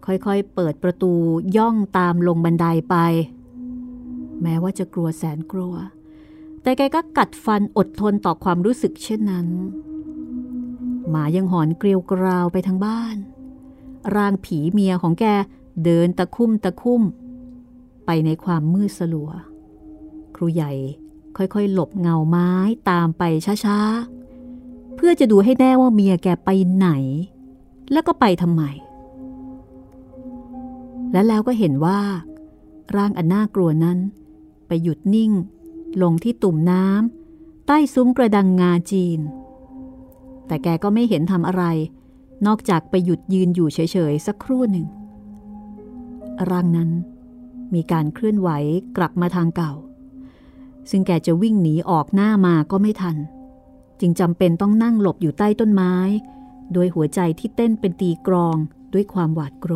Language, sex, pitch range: Thai, female, 170-245 Hz